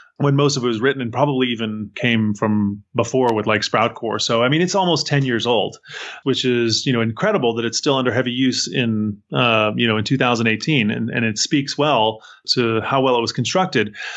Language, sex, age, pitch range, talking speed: English, male, 30-49, 115-145 Hz, 215 wpm